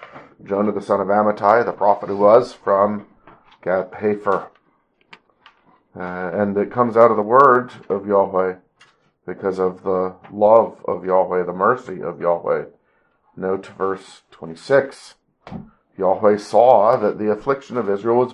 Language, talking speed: English, 135 wpm